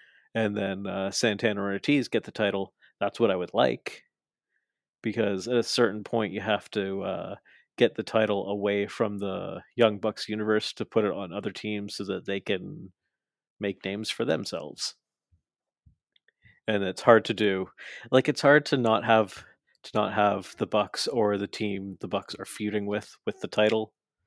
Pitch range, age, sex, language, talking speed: 100-115 Hz, 30-49, male, English, 180 wpm